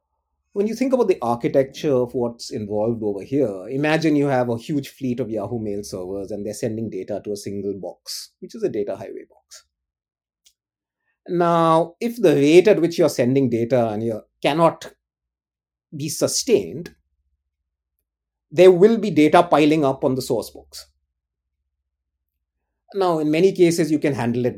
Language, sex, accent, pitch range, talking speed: English, male, Indian, 105-155 Hz, 165 wpm